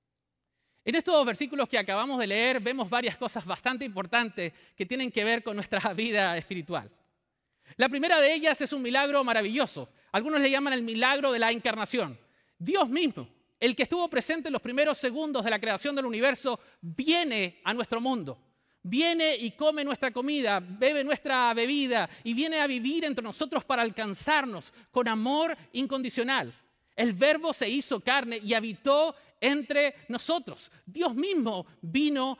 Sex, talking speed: male, 160 wpm